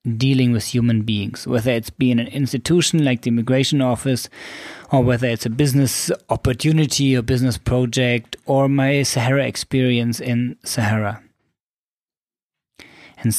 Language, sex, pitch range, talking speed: English, male, 110-135 Hz, 130 wpm